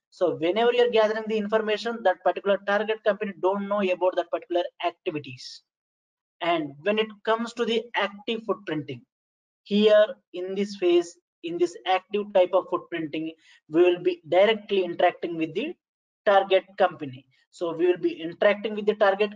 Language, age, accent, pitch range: English, 20-39, Indian, 175-215 Hz